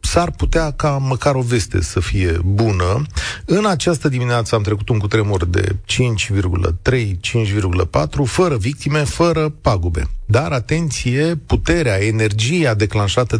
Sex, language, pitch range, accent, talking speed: male, Romanian, 105-140 Hz, native, 120 wpm